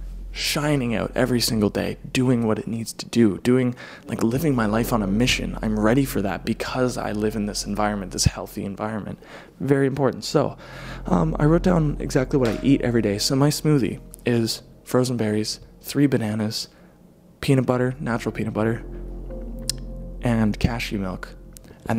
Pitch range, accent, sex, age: 105-125 Hz, American, male, 20-39